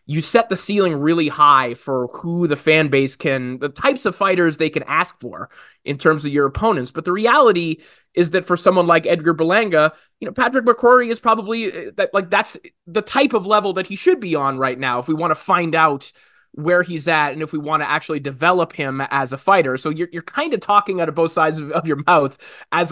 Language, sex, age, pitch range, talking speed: English, male, 20-39, 140-185 Hz, 235 wpm